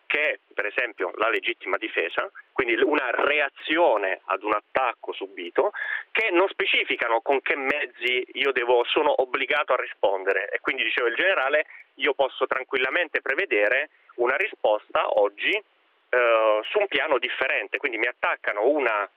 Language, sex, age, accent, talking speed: Italian, male, 30-49, native, 145 wpm